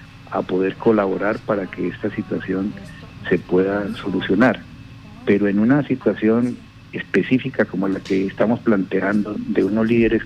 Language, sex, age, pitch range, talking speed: Spanish, male, 60-79, 95-110 Hz, 135 wpm